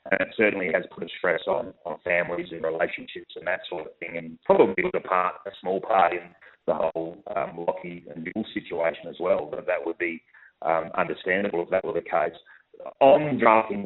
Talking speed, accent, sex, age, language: 210 wpm, Australian, male, 30-49, English